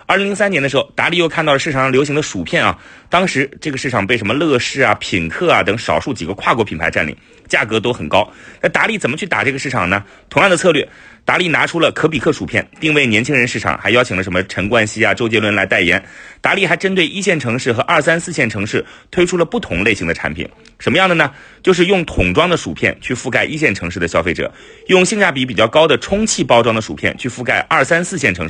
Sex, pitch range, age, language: male, 100-155 Hz, 30-49, Chinese